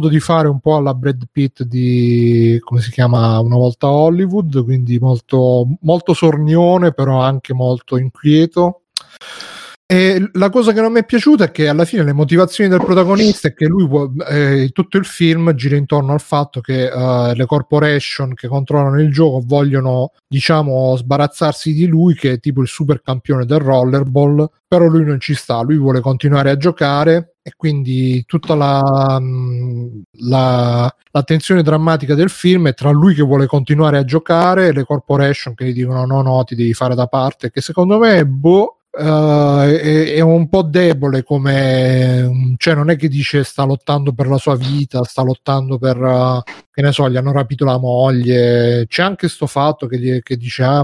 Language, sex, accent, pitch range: Italian, male, native, 130-160 Hz